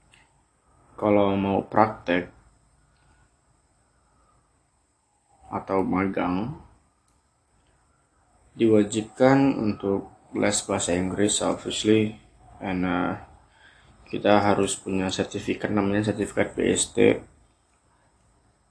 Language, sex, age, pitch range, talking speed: Indonesian, male, 20-39, 95-110 Hz, 65 wpm